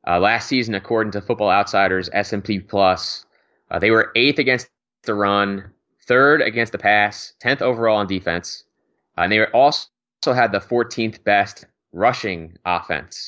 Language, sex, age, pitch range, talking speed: English, male, 20-39, 95-110 Hz, 165 wpm